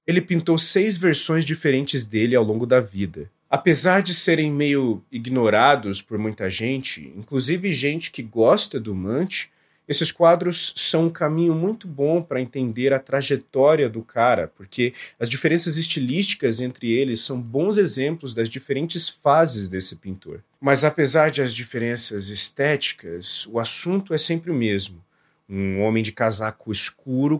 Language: Portuguese